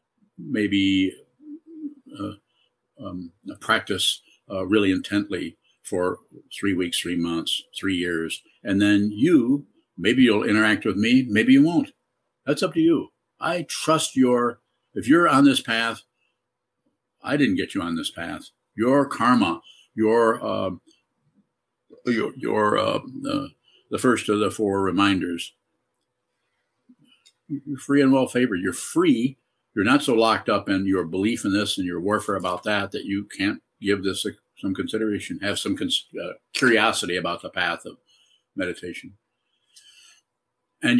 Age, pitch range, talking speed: 50-69, 100-160 Hz, 145 wpm